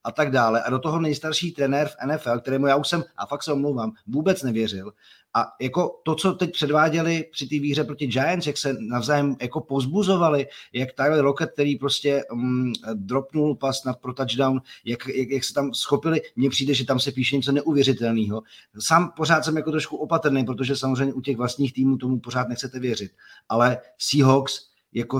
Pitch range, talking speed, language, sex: 125-145 Hz, 190 wpm, Czech, male